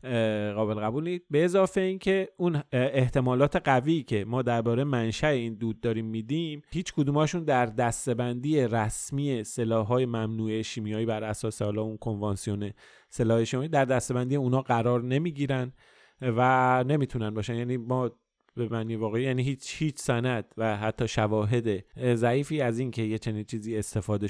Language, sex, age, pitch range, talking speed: Persian, male, 30-49, 110-145 Hz, 150 wpm